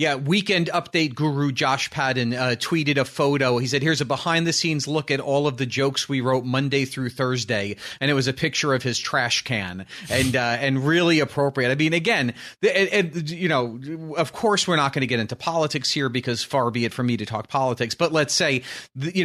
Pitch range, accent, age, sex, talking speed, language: 130-165 Hz, American, 40-59, male, 220 wpm, English